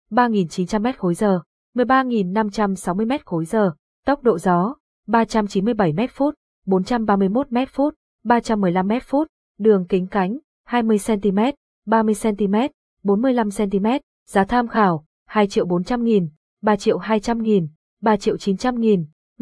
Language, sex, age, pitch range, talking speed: Vietnamese, female, 20-39, 190-240 Hz, 85 wpm